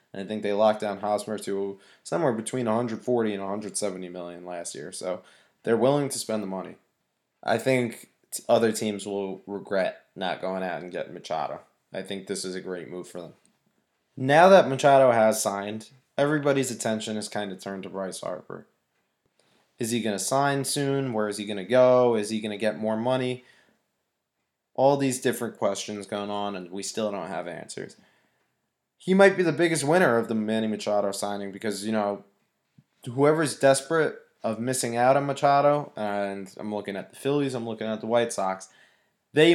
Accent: American